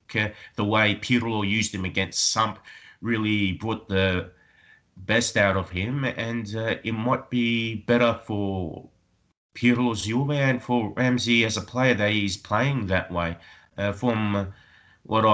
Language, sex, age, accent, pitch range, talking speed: English, male, 30-49, Australian, 95-115 Hz, 145 wpm